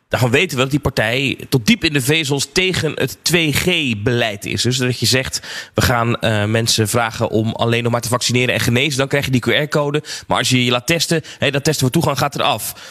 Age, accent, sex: 20-39, Dutch, male